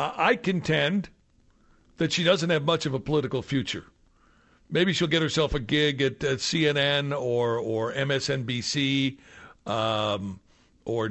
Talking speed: 135 wpm